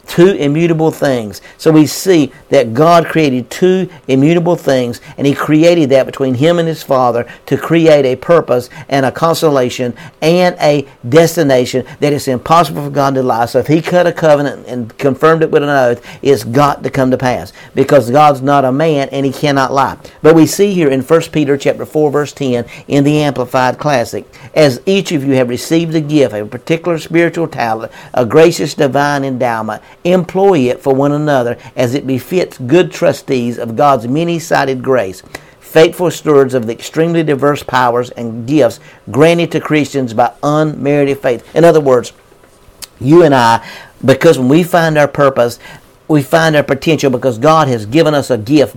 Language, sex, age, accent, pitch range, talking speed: English, male, 50-69, American, 130-160 Hz, 180 wpm